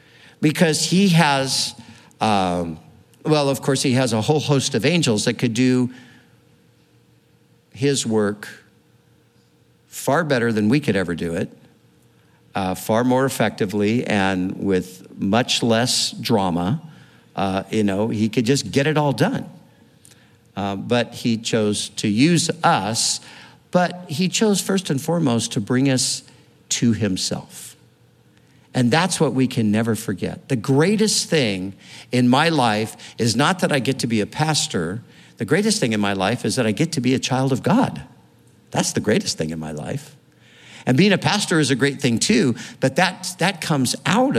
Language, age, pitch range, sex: English, 50-69, 110-150 Hz, male